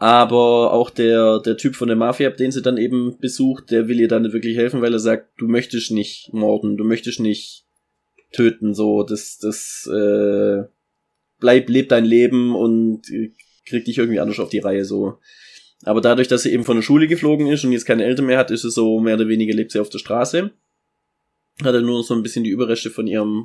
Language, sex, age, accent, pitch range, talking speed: German, male, 20-39, German, 110-125 Hz, 220 wpm